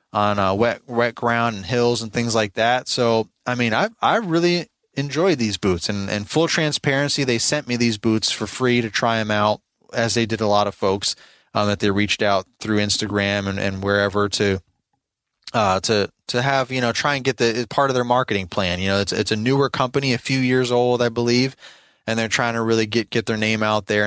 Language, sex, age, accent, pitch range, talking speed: English, male, 20-39, American, 105-120 Hz, 230 wpm